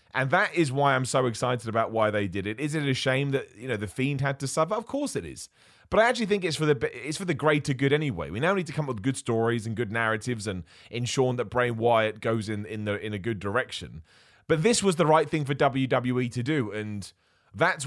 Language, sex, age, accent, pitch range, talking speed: English, male, 30-49, British, 105-145 Hz, 260 wpm